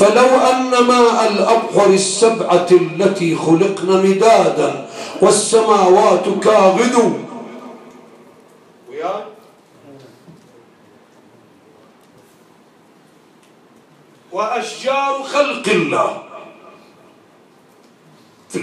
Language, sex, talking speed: English, male, 40 wpm